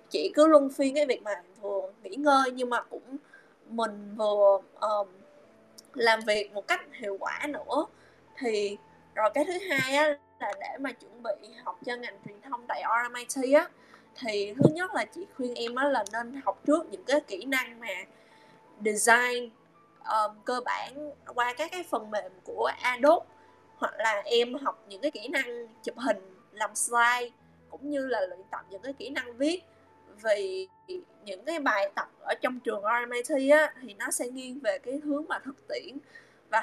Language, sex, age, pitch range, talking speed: Vietnamese, female, 20-39, 225-300 Hz, 185 wpm